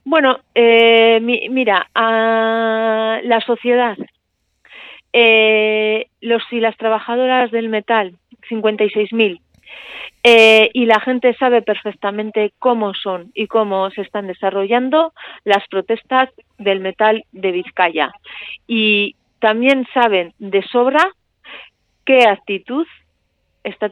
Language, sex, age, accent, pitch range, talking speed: Spanish, female, 40-59, Spanish, 195-235 Hz, 105 wpm